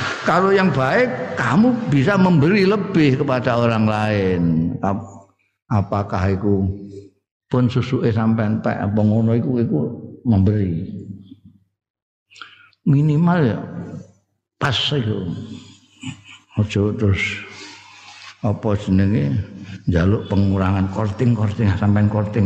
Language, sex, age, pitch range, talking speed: Indonesian, male, 60-79, 100-130 Hz, 85 wpm